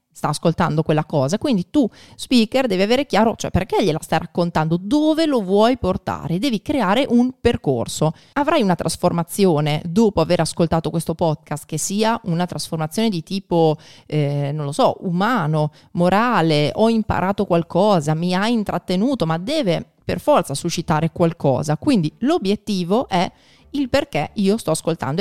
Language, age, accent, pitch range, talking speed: Italian, 30-49, native, 155-215 Hz, 150 wpm